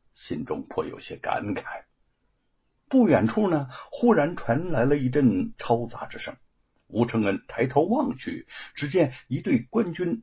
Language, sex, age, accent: Chinese, male, 60-79, native